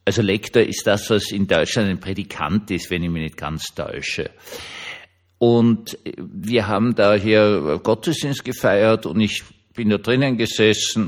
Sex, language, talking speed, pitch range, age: male, German, 155 wpm, 95-115 Hz, 50-69